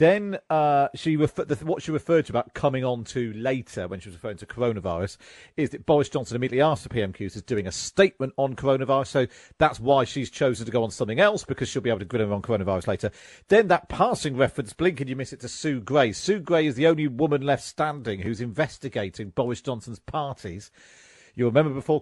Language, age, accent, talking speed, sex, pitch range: English, 40-59, British, 225 wpm, male, 115-155 Hz